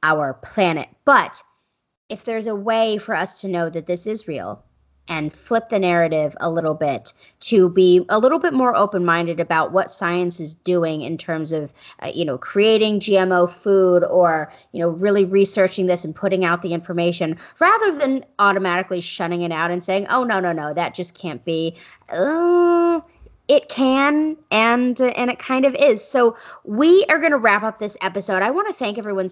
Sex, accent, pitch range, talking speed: female, American, 170-230 Hz, 190 wpm